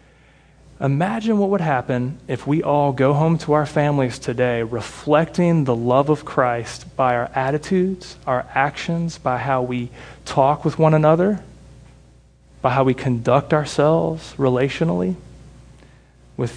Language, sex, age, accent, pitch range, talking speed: English, male, 30-49, American, 120-145 Hz, 135 wpm